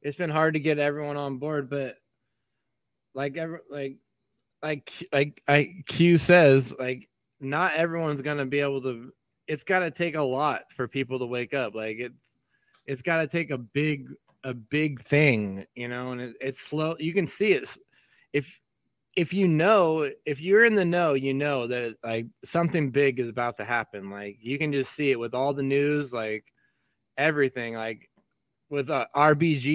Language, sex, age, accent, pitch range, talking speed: English, male, 20-39, American, 130-155 Hz, 190 wpm